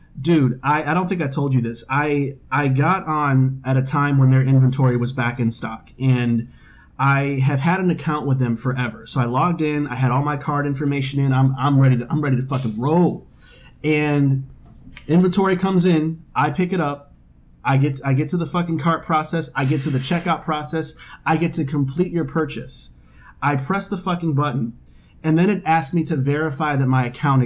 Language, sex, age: English, male, 30-49